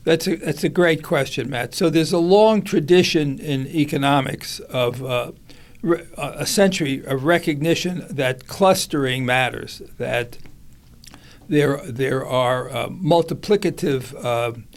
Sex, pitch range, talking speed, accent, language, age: male, 130-160 Hz, 120 wpm, American, English, 60-79